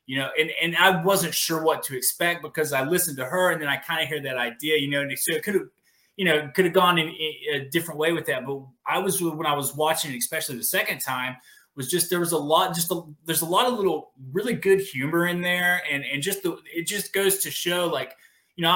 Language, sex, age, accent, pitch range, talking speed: English, male, 20-39, American, 140-180 Hz, 270 wpm